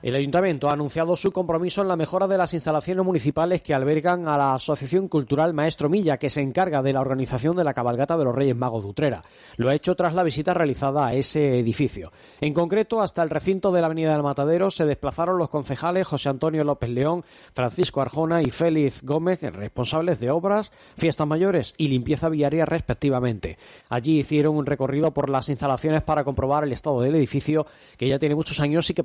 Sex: male